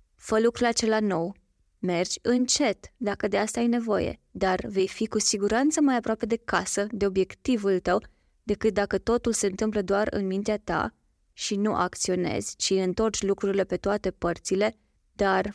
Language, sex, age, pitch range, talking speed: Romanian, female, 20-39, 185-215 Hz, 160 wpm